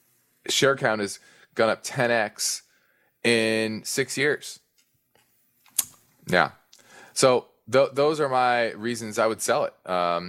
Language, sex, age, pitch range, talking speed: English, male, 20-39, 95-120 Hz, 120 wpm